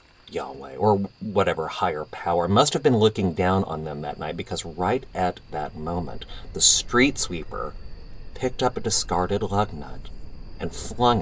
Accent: American